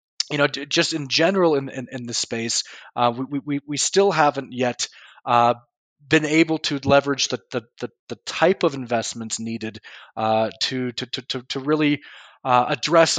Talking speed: 180 wpm